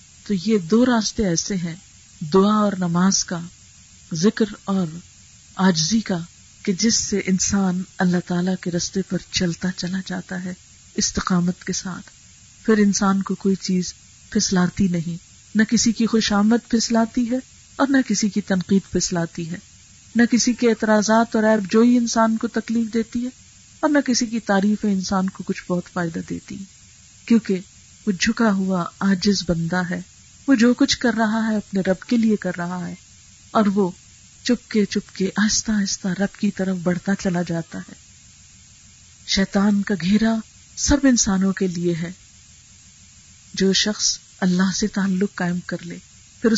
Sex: female